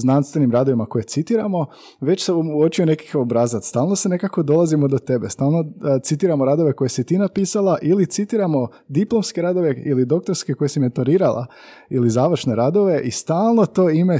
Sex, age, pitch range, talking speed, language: male, 20-39, 120-160 Hz, 160 wpm, Croatian